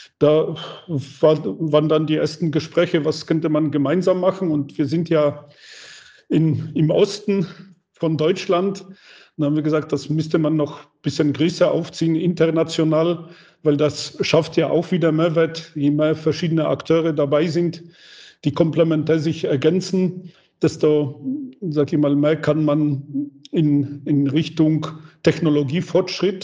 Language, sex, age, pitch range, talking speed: German, male, 50-69, 145-165 Hz, 140 wpm